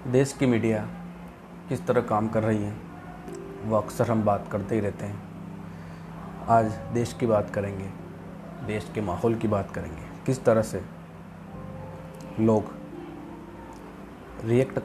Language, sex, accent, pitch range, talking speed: Hindi, male, native, 105-125 Hz, 135 wpm